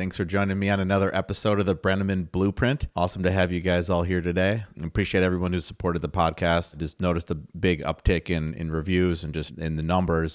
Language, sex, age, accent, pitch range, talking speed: English, male, 30-49, American, 80-95 Hz, 230 wpm